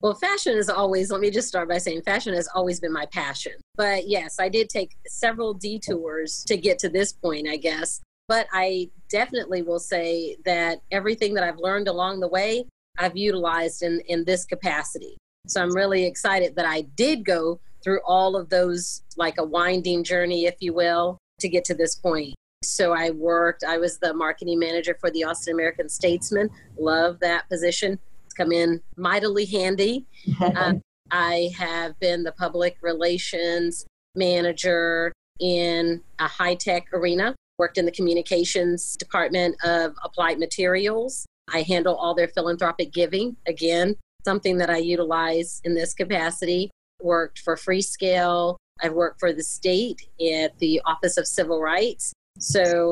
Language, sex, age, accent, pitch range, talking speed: English, female, 40-59, American, 170-190 Hz, 160 wpm